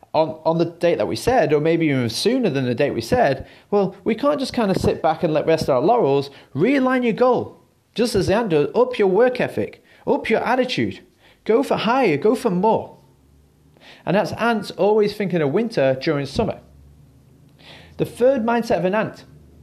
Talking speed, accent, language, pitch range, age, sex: 200 wpm, British, English, 165-245 Hz, 30-49, male